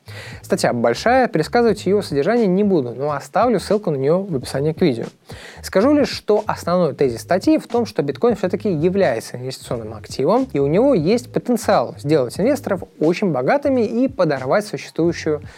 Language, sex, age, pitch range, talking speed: Russian, male, 20-39, 145-220 Hz, 160 wpm